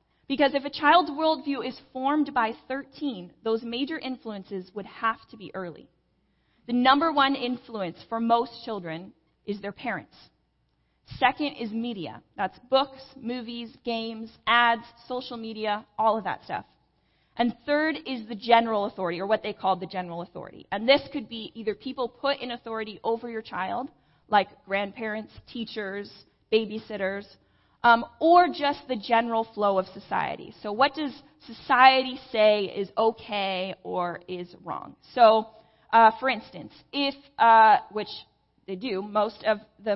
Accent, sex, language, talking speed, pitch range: American, female, English, 150 wpm, 205-260 Hz